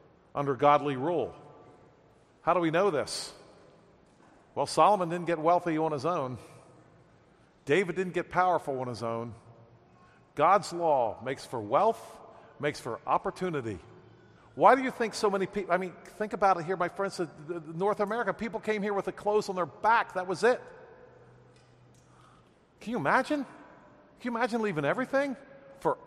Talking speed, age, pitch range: 160 wpm, 50-69, 155-210 Hz